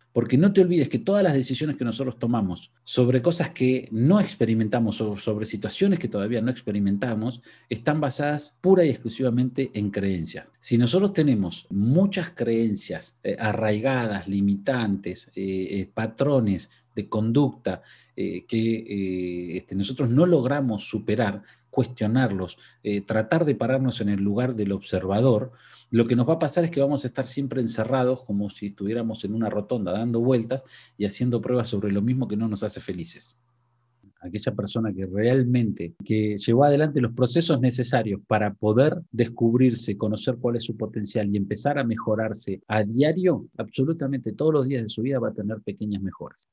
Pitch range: 105-135 Hz